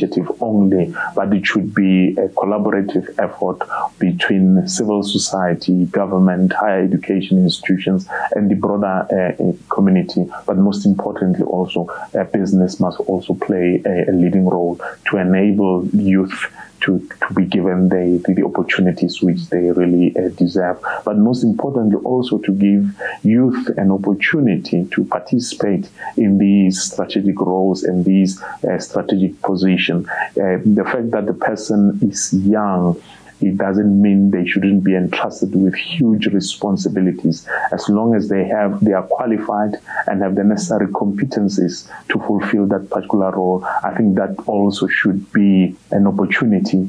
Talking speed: 145 wpm